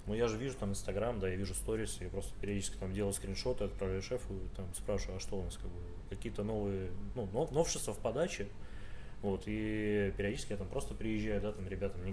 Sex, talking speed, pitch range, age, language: male, 220 wpm, 95-110 Hz, 20-39, Russian